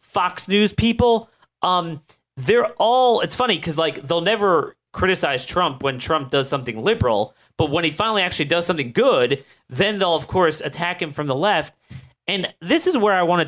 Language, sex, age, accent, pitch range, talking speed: English, male, 30-49, American, 125-190 Hz, 190 wpm